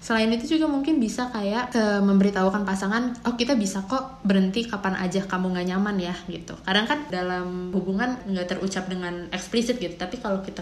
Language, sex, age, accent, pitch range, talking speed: Indonesian, female, 20-39, native, 180-215 Hz, 185 wpm